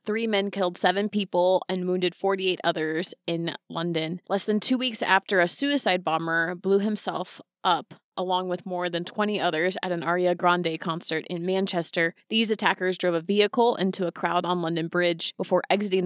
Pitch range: 170-195 Hz